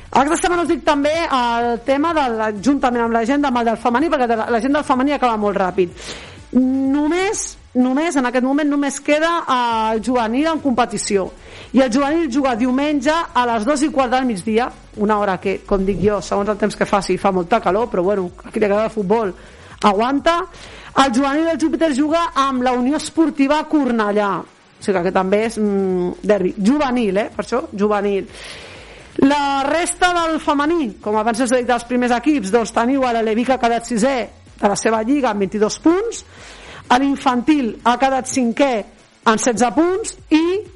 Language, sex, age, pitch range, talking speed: Spanish, female, 50-69, 220-285 Hz, 185 wpm